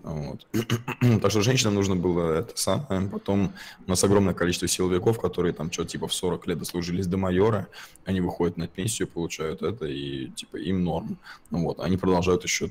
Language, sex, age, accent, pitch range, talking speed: Russian, male, 20-39, native, 85-95 Hz, 185 wpm